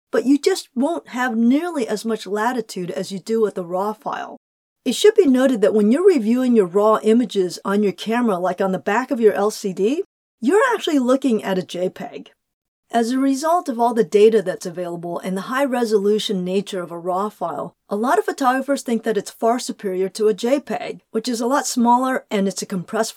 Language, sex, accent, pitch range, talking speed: English, female, American, 210-285 Hz, 210 wpm